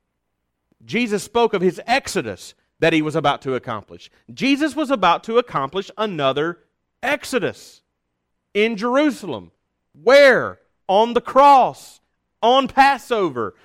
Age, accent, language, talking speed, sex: 40-59, American, English, 115 wpm, male